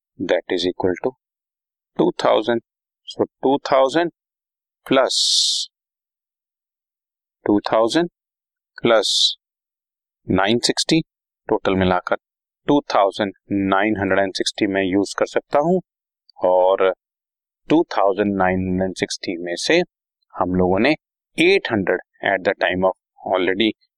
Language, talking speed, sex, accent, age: Hindi, 110 wpm, male, native, 30-49